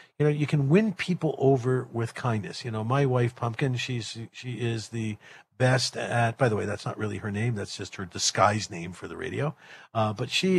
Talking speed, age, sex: 225 wpm, 50-69, male